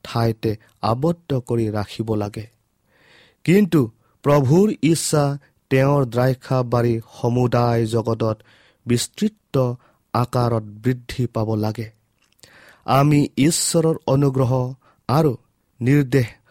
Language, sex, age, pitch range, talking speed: English, male, 40-59, 115-140 Hz, 90 wpm